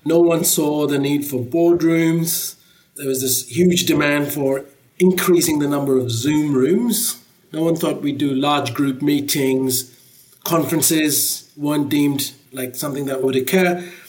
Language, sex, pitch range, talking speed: English, male, 135-175 Hz, 150 wpm